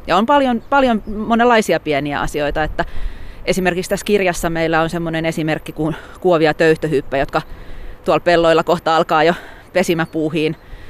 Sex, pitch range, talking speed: female, 155-180 Hz, 130 wpm